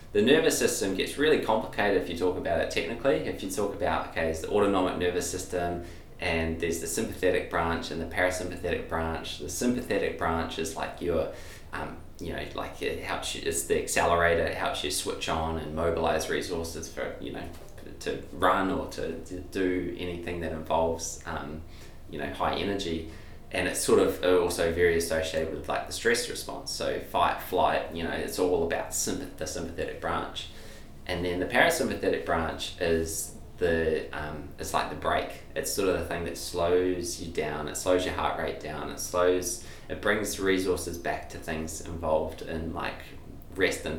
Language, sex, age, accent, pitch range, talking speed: English, male, 20-39, Australian, 80-90 Hz, 185 wpm